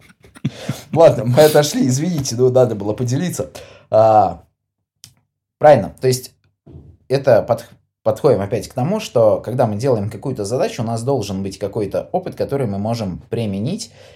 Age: 20-39